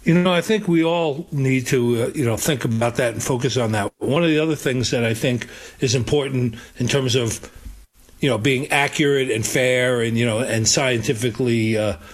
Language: English